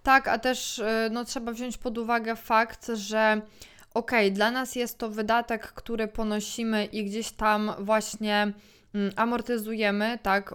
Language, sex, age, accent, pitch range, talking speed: Polish, female, 20-39, native, 215-255 Hz, 150 wpm